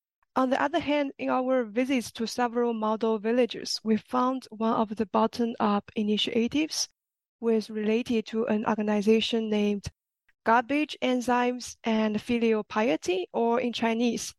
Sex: female